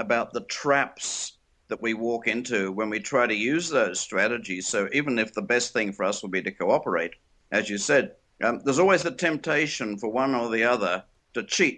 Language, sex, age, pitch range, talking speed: English, male, 50-69, 115-150 Hz, 210 wpm